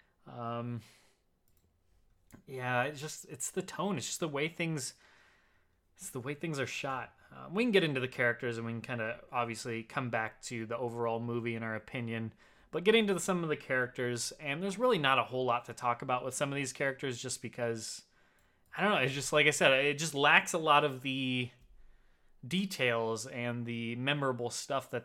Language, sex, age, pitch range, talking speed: English, male, 20-39, 115-135 Hz, 205 wpm